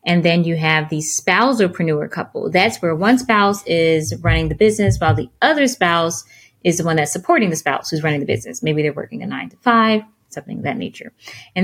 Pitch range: 160-190 Hz